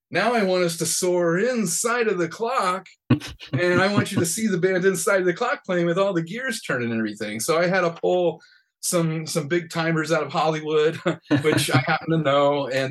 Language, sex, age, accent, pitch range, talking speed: English, male, 30-49, American, 135-165 Hz, 225 wpm